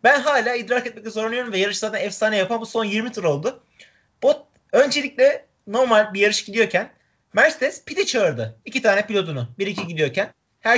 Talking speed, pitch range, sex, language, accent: 175 wpm, 200-255 Hz, male, Turkish, native